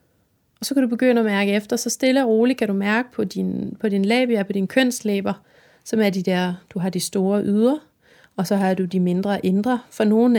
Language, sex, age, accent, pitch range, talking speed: Danish, female, 30-49, native, 195-250 Hz, 235 wpm